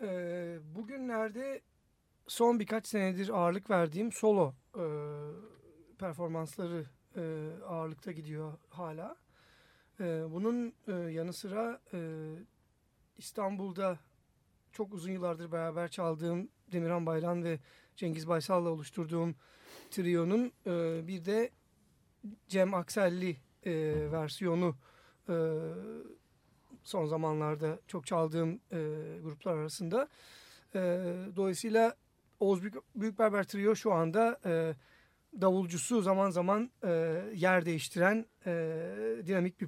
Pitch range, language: 165-210 Hz, Turkish